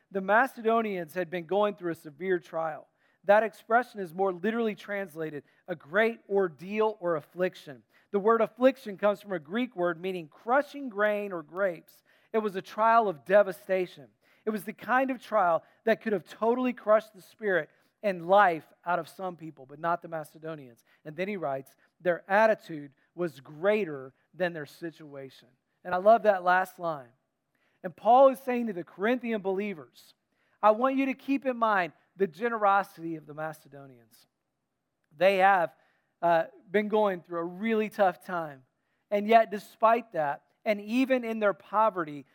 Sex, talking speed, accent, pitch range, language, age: male, 165 wpm, American, 165-215 Hz, English, 40-59